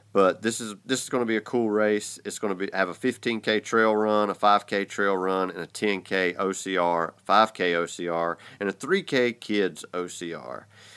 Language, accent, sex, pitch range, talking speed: English, American, male, 85-110 Hz, 190 wpm